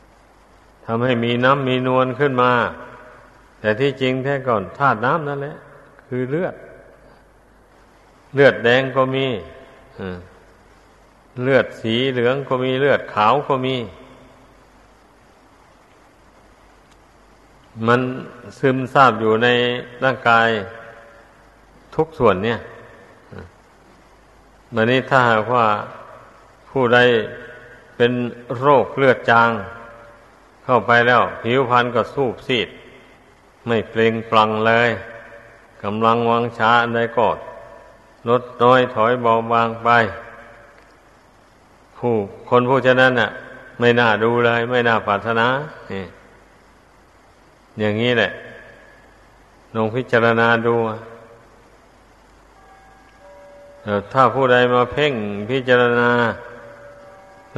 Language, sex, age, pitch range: Thai, male, 60-79, 110-125 Hz